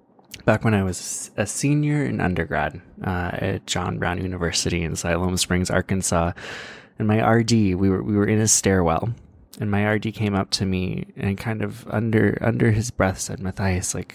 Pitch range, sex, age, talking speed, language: 90-115 Hz, male, 20-39, 185 wpm, English